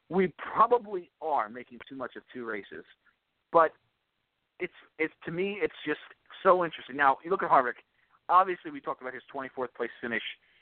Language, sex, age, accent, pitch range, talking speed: English, male, 40-59, American, 130-175 Hz, 180 wpm